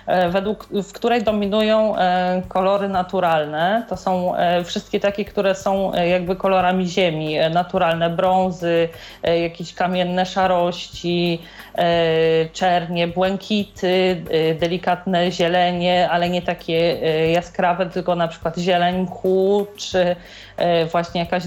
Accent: native